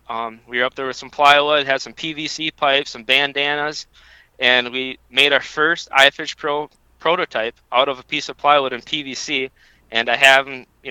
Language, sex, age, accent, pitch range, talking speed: English, male, 20-39, American, 125-150 Hz, 195 wpm